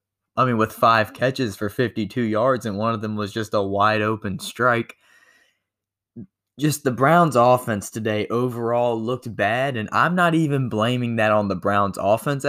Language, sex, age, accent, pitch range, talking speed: English, male, 20-39, American, 110-155 Hz, 170 wpm